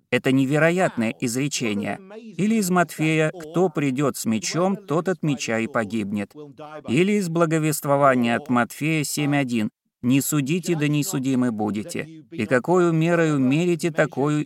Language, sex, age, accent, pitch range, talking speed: Russian, male, 30-49, native, 120-170 Hz, 135 wpm